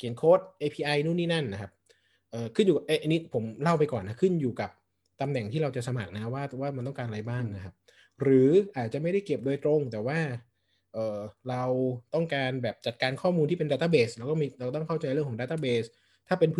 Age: 20-39